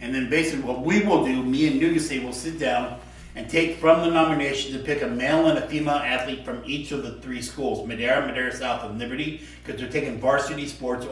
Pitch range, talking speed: 115-150 Hz, 225 wpm